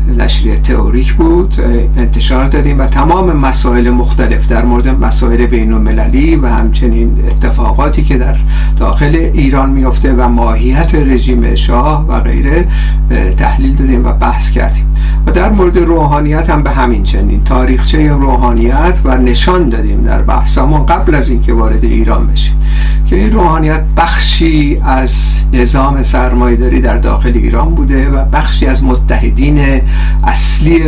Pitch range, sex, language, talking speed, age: 120-150 Hz, male, Persian, 135 wpm, 50-69